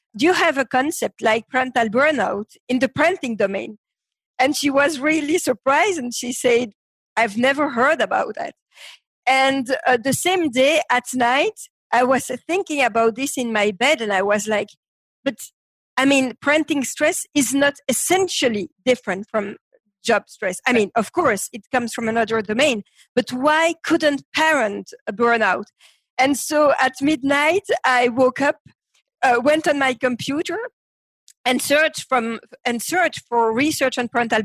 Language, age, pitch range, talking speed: English, 50-69, 235-295 Hz, 160 wpm